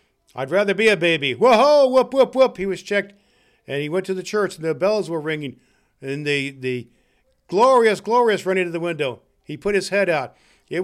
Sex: male